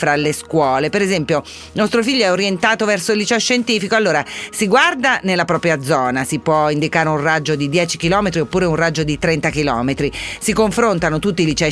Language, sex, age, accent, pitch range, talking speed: Italian, female, 40-59, native, 155-200 Hz, 195 wpm